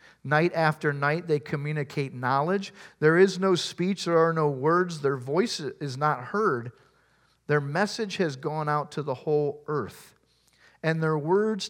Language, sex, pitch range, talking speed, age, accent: English, male, 150-200 Hz, 160 wpm, 40-59, American